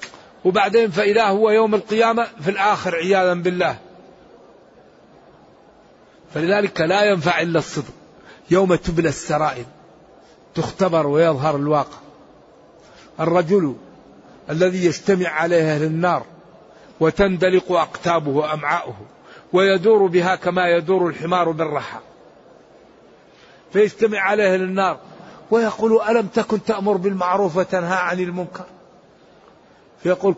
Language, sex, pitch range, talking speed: Arabic, male, 165-195 Hz, 95 wpm